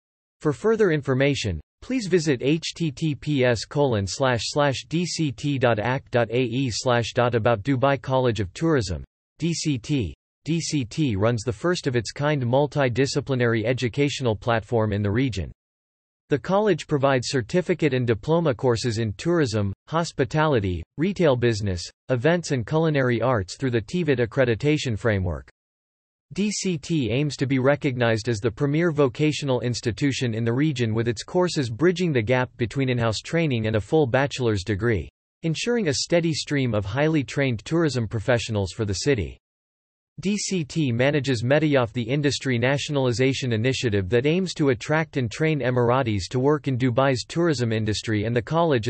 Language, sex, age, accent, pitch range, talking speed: English, male, 40-59, American, 115-150 Hz, 135 wpm